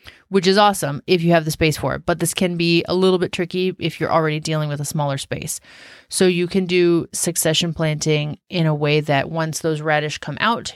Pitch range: 150-175 Hz